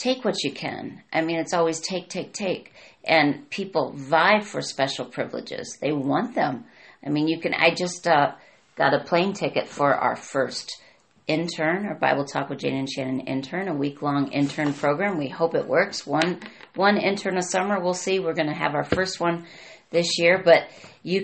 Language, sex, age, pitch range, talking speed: English, female, 40-59, 140-180 Hz, 195 wpm